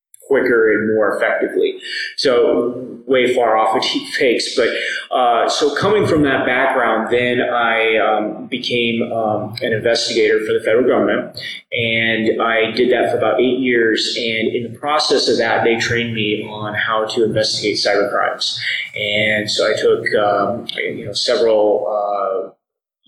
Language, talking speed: English, 160 wpm